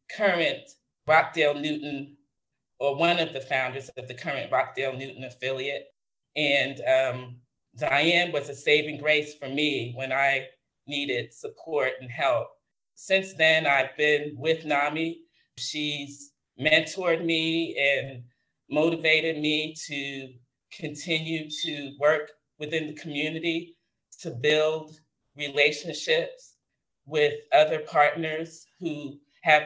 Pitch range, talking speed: 135-160 Hz, 115 wpm